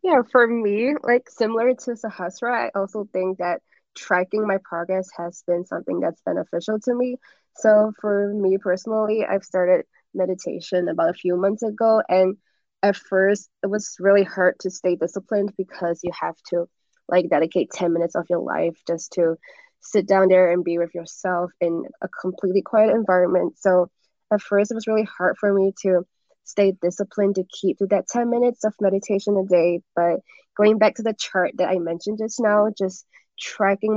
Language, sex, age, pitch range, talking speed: English, female, 20-39, 180-210 Hz, 180 wpm